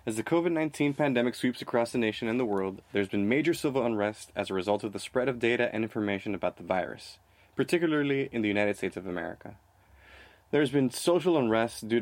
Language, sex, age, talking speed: English, male, 20-39, 205 wpm